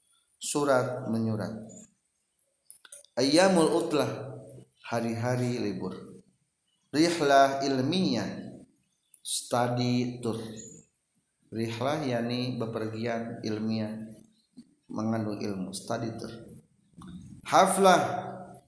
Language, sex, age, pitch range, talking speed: Indonesian, male, 50-69, 120-165 Hz, 60 wpm